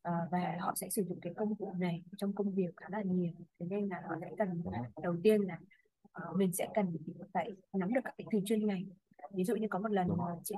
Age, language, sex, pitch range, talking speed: 20-39, Vietnamese, female, 175-215 Hz, 255 wpm